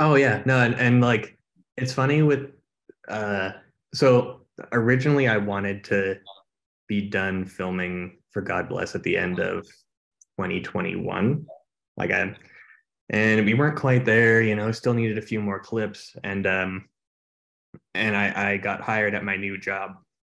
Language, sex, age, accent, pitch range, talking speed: French, male, 20-39, American, 95-115 Hz, 155 wpm